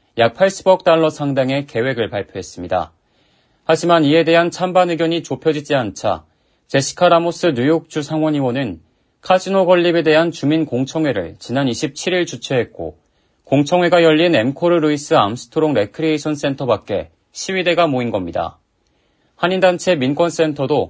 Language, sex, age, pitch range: Korean, male, 40-59, 130-175 Hz